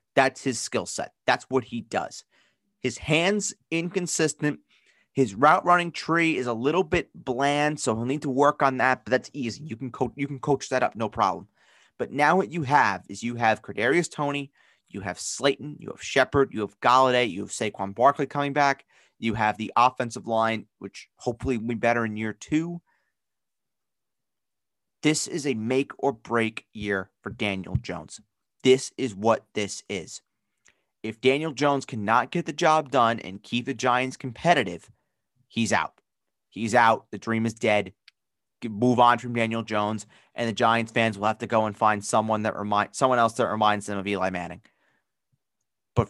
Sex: male